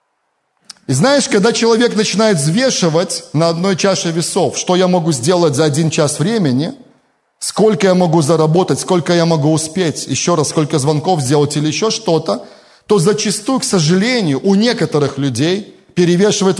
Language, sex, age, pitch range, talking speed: Russian, male, 30-49, 150-195 Hz, 155 wpm